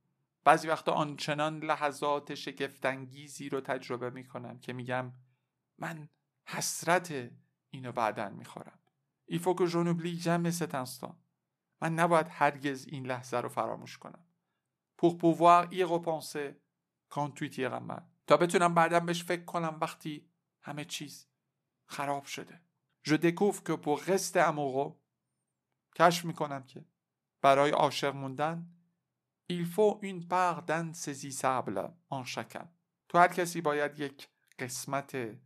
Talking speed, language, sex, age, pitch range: 115 wpm, Persian, male, 50-69, 135-170 Hz